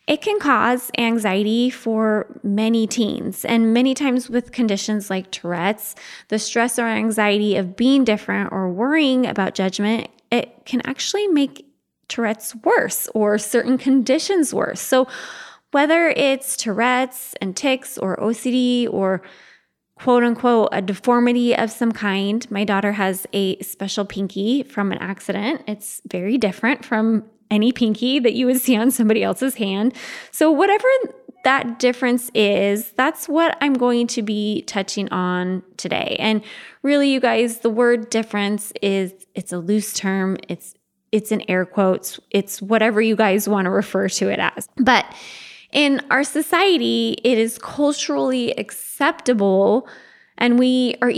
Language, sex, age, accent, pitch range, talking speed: English, female, 20-39, American, 205-255 Hz, 145 wpm